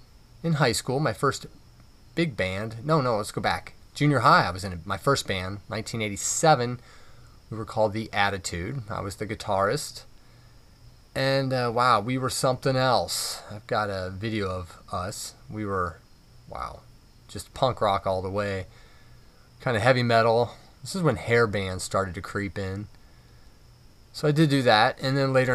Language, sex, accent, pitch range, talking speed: English, male, American, 105-130 Hz, 170 wpm